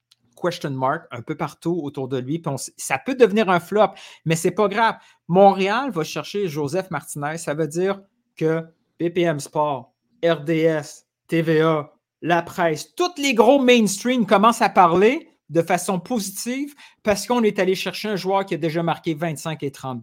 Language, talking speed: French, 175 wpm